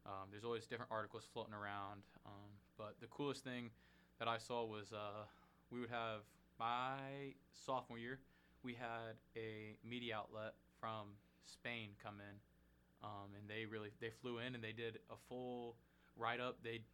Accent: American